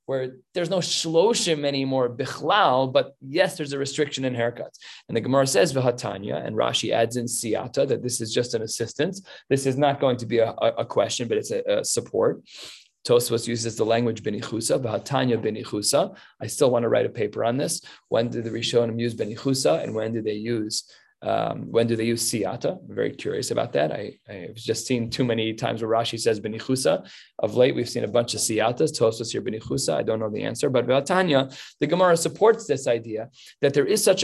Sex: male